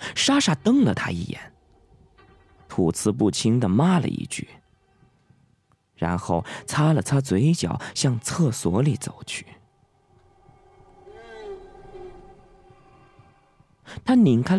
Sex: male